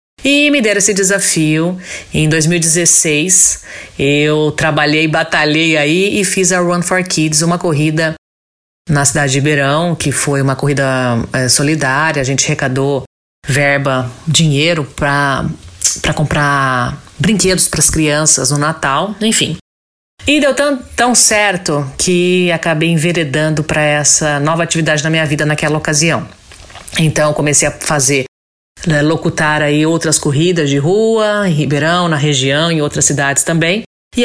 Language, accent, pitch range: Portuguese, Brazilian, 140-175 Hz